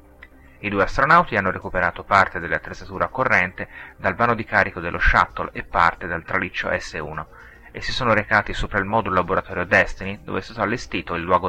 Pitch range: 95-115 Hz